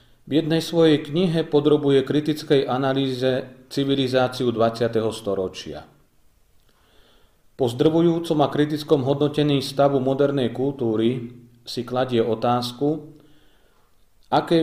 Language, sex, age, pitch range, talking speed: Slovak, male, 40-59, 115-150 Hz, 90 wpm